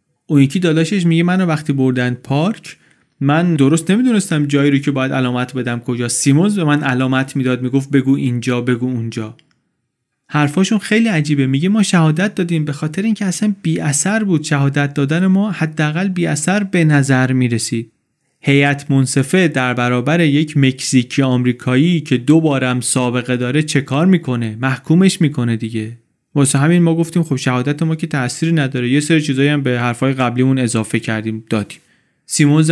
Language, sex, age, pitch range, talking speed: Persian, male, 30-49, 130-160 Hz, 165 wpm